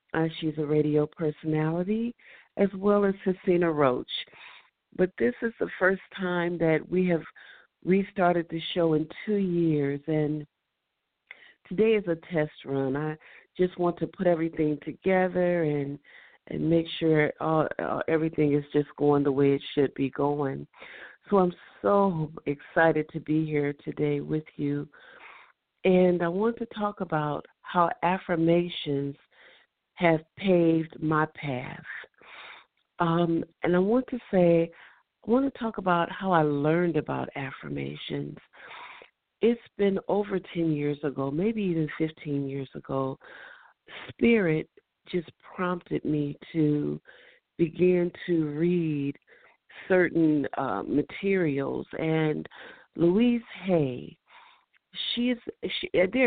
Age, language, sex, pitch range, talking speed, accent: 50-69, English, female, 150-185 Hz, 125 wpm, American